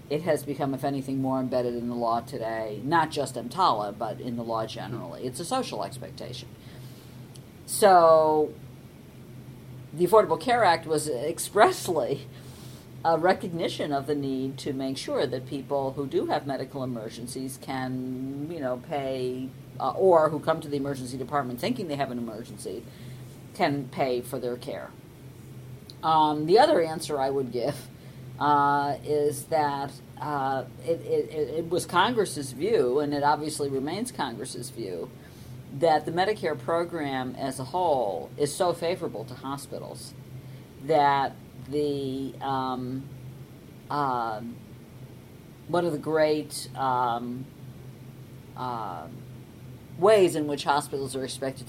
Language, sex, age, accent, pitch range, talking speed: English, female, 50-69, American, 125-145 Hz, 135 wpm